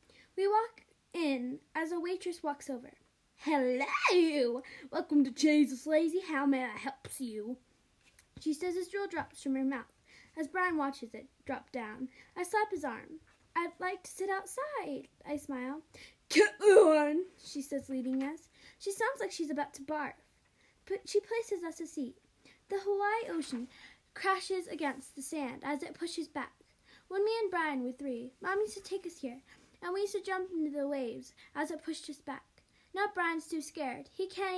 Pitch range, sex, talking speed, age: 275-370 Hz, female, 180 wpm, 10-29